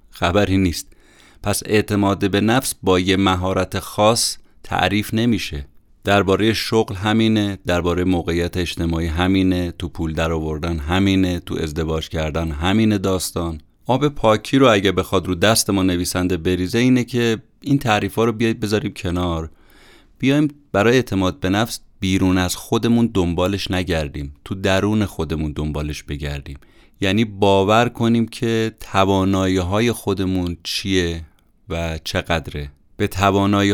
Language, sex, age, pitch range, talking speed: Persian, male, 30-49, 85-105 Hz, 130 wpm